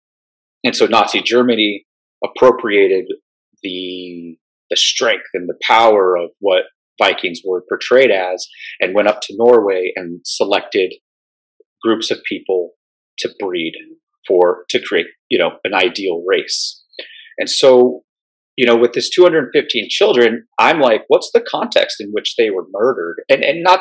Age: 30-49